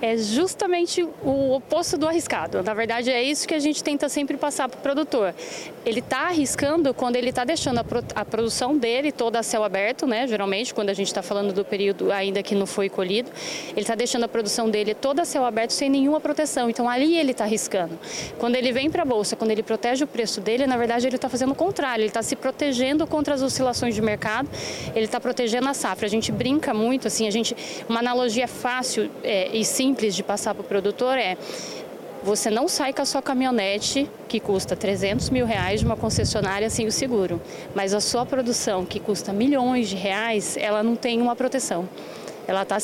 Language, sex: Portuguese, female